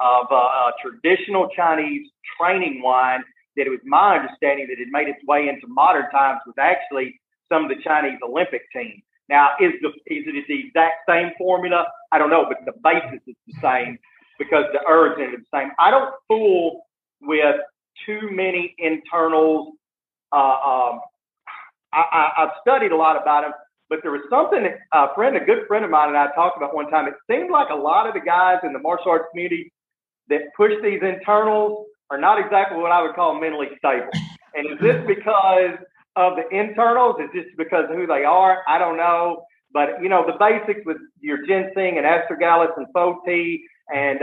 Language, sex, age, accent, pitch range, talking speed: English, male, 40-59, American, 160-215 Hz, 195 wpm